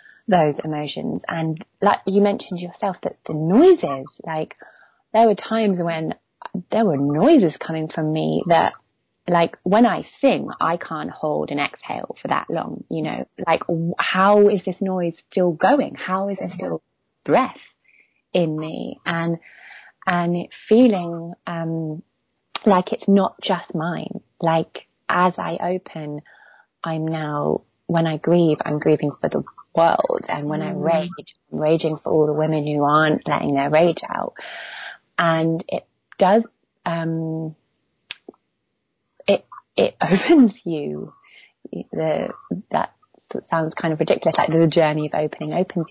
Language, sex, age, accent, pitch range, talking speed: English, female, 20-39, British, 155-190 Hz, 140 wpm